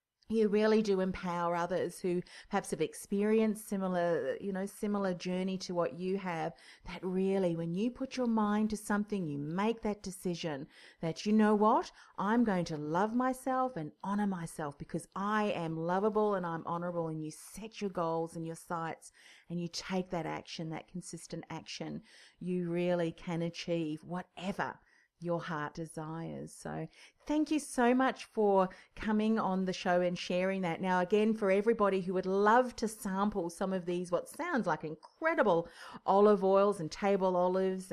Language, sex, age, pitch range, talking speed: English, female, 40-59, 170-210 Hz, 170 wpm